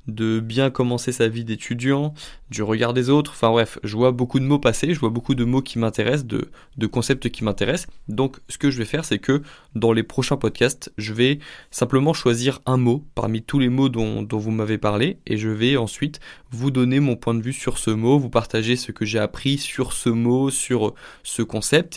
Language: French